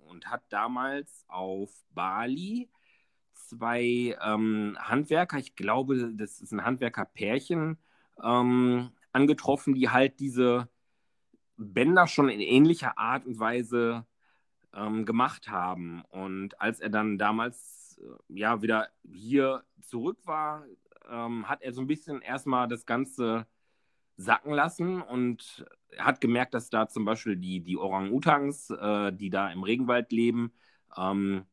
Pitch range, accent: 105-135 Hz, German